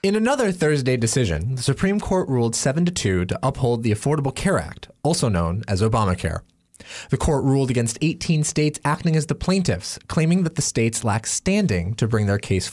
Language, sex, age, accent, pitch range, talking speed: English, male, 30-49, American, 95-140 Hz, 190 wpm